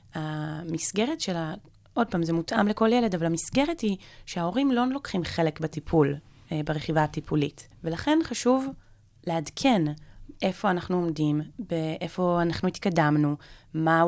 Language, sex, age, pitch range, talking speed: Hebrew, female, 20-39, 155-190 Hz, 125 wpm